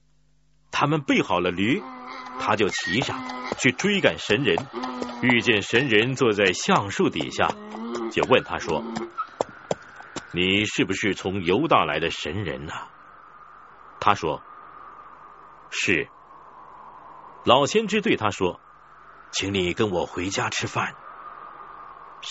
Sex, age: male, 50-69